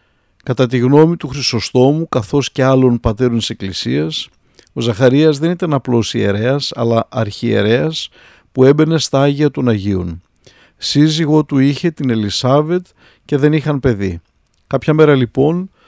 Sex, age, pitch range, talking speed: male, 50-69, 115-155 Hz, 140 wpm